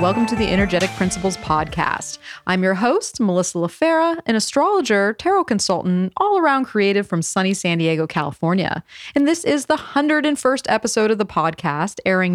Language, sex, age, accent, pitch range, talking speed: English, female, 30-49, American, 180-280 Hz, 155 wpm